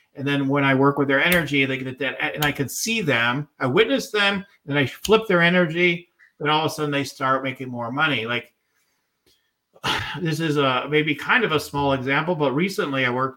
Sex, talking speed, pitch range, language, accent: male, 215 wpm, 135-160 Hz, English, American